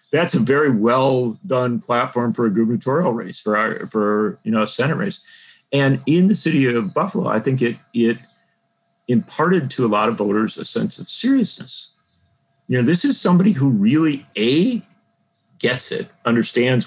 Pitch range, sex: 115-170 Hz, male